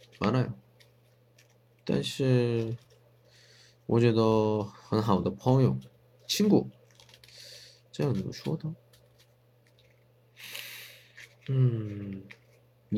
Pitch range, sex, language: 110-125 Hz, male, Chinese